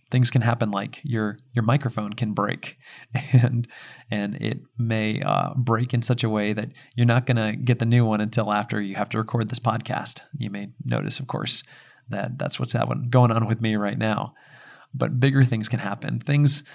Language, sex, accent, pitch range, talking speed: English, male, American, 110-130 Hz, 200 wpm